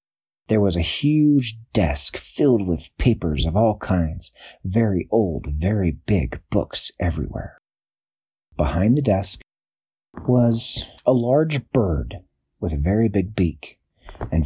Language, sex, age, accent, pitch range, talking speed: English, male, 40-59, American, 85-125 Hz, 125 wpm